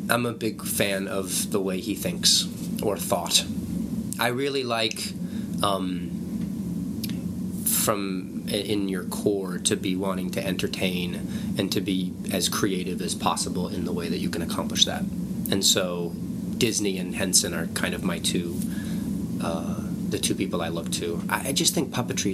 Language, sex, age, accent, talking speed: English, male, 30-49, American, 160 wpm